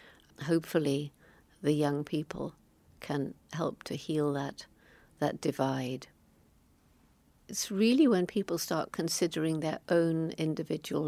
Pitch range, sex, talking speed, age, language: 145-170 Hz, female, 110 wpm, 60-79, English